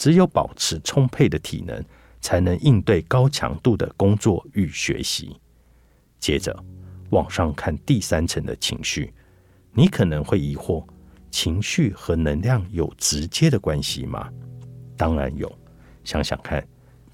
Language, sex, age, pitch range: Chinese, male, 50-69, 80-115 Hz